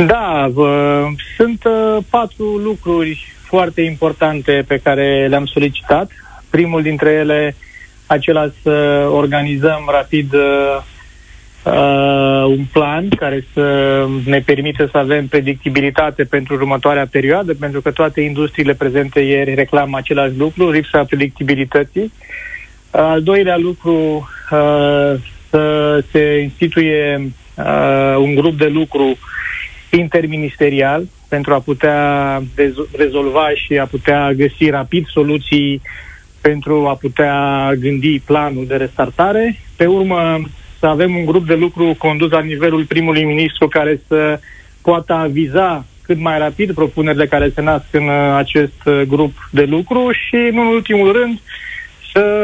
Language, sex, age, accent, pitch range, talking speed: Romanian, male, 30-49, native, 140-160 Hz, 120 wpm